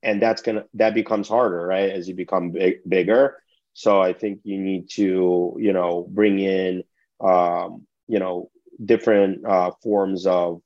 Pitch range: 90-100 Hz